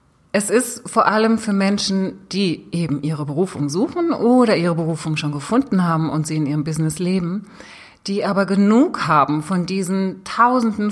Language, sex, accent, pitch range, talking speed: German, female, German, 170-215 Hz, 165 wpm